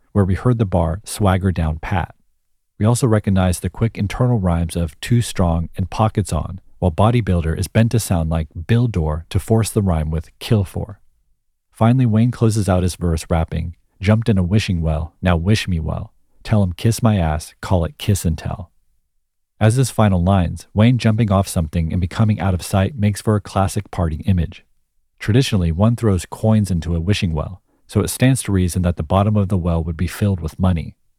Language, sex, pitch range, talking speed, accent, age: English, male, 85-110 Hz, 205 wpm, American, 40-59